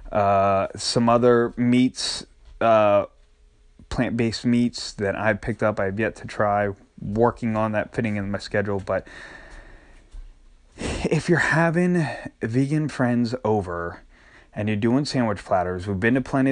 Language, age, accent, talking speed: English, 20-39, American, 140 wpm